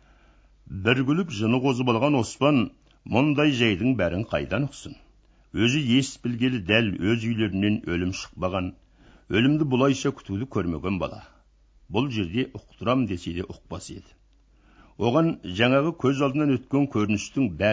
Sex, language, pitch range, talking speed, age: male, Russian, 100-135 Hz, 85 wpm, 60-79